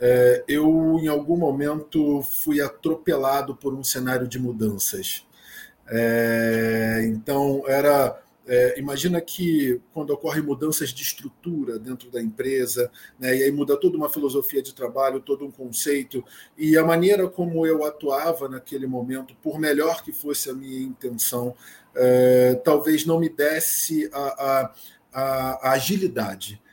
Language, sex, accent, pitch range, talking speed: Portuguese, male, Brazilian, 130-165 Hz, 140 wpm